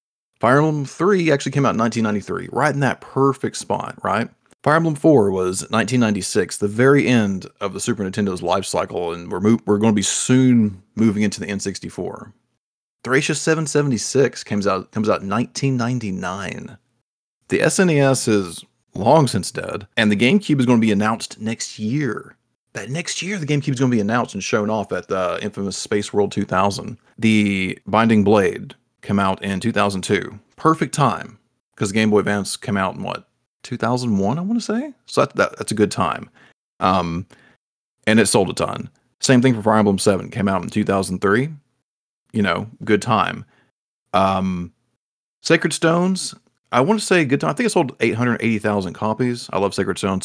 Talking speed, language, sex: 180 wpm, English, male